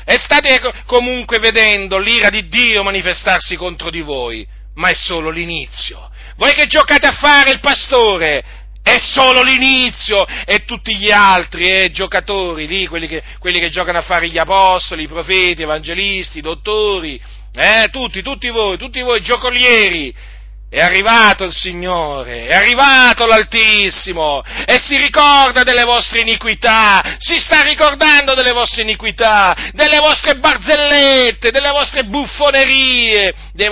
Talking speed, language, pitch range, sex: 140 wpm, Italian, 180-255 Hz, male